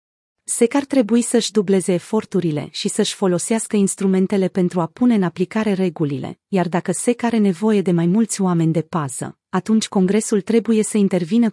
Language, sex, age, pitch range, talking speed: Romanian, female, 30-49, 180-220 Hz, 165 wpm